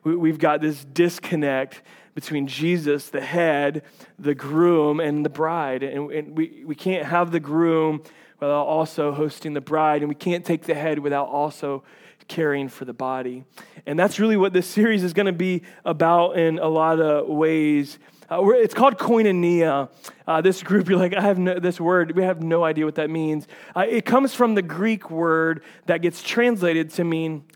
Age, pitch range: 30-49, 150-190 Hz